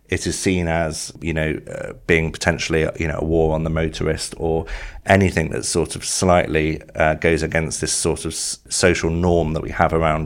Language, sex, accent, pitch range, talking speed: English, male, British, 80-85 Hz, 200 wpm